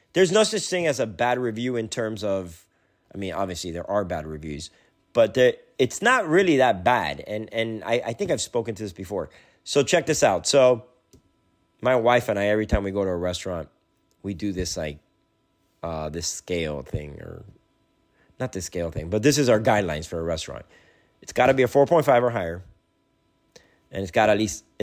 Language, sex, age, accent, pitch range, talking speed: English, male, 30-49, American, 90-125 Hz, 210 wpm